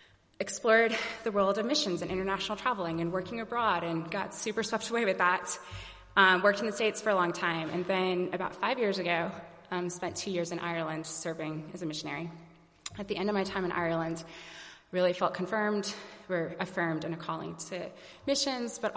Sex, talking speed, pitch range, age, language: female, 195 wpm, 165-195 Hz, 20-39, English